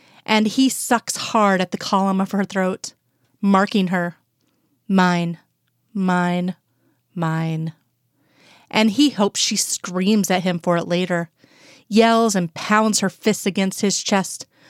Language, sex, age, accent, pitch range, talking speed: English, female, 30-49, American, 180-210 Hz, 135 wpm